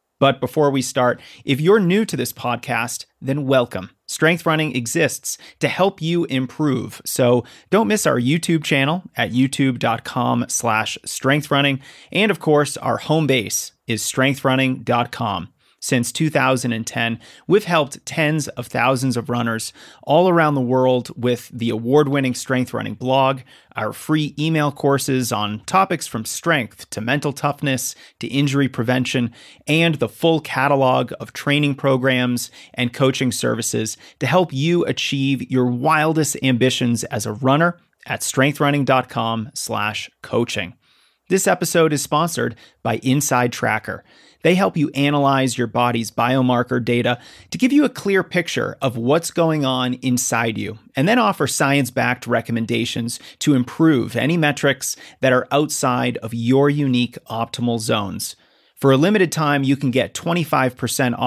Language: English